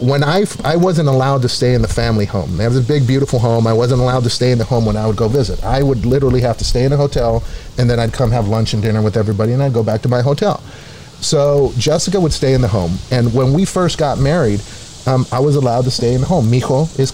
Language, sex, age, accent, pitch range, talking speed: English, male, 30-49, American, 120-150 Hz, 280 wpm